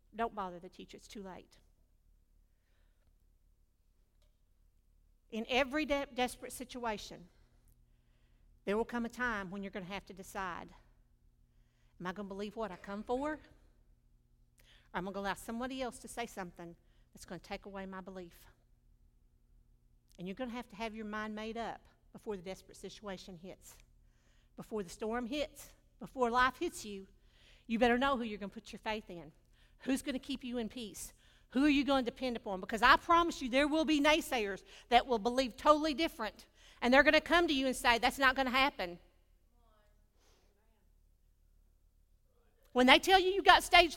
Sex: female